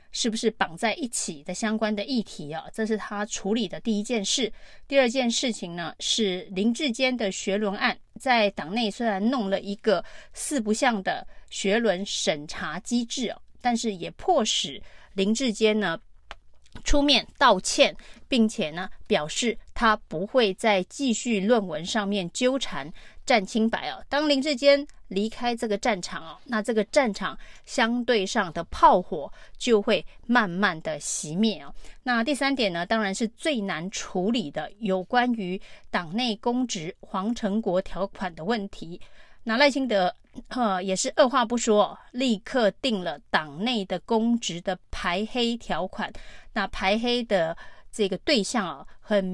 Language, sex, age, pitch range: Chinese, female, 30-49, 195-245 Hz